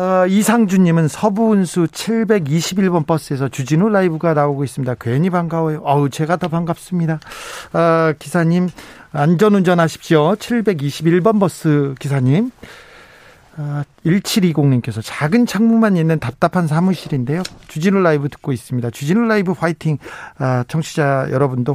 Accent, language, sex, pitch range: native, Korean, male, 145-200 Hz